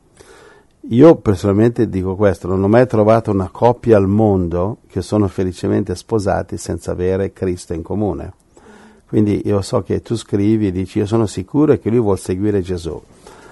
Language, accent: Italian, native